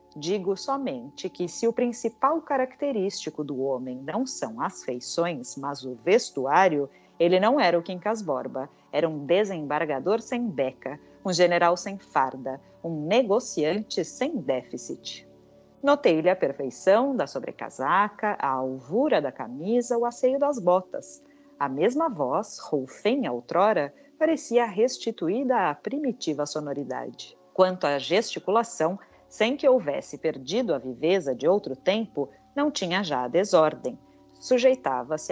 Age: 40-59